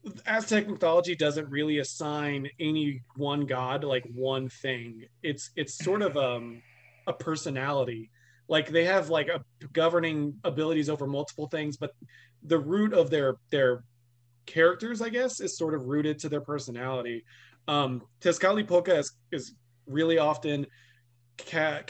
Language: English